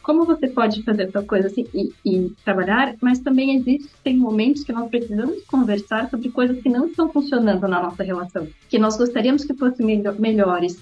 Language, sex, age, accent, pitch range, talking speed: Portuguese, female, 20-39, Brazilian, 210-270 Hz, 190 wpm